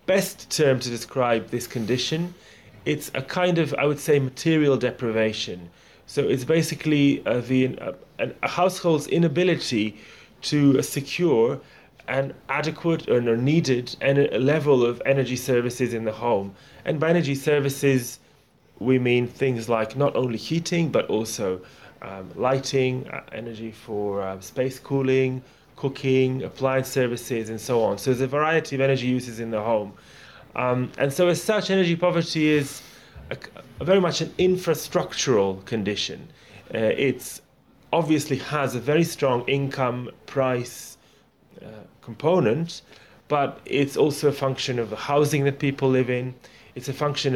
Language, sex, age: English, male, 30-49